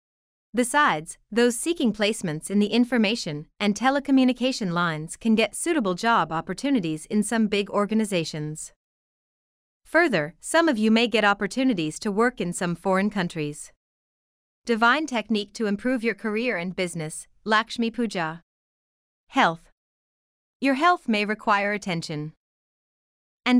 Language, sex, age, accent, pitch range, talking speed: English, female, 30-49, American, 175-245 Hz, 125 wpm